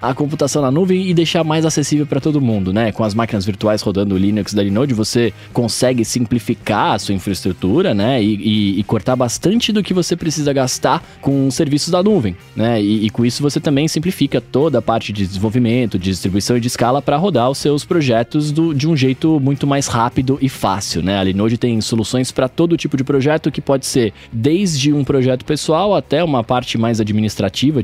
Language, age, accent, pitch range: Portuguese, 20-39, Brazilian, 110-155 Hz